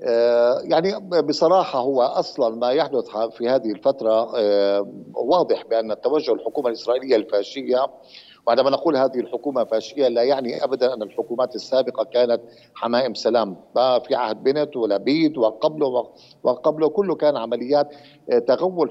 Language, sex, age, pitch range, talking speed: Arabic, male, 50-69, 120-175 Hz, 125 wpm